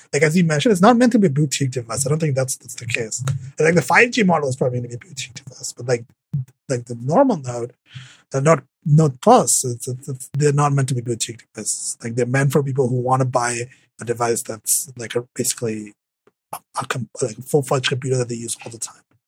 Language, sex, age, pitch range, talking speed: English, male, 20-39, 125-160 Hz, 250 wpm